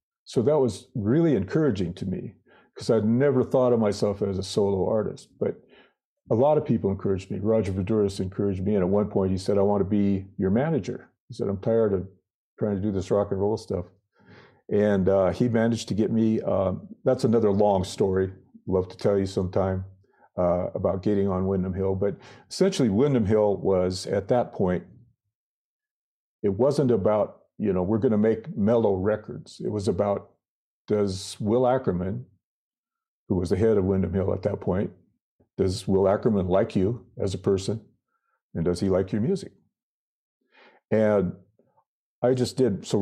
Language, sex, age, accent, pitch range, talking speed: English, male, 50-69, American, 95-115 Hz, 180 wpm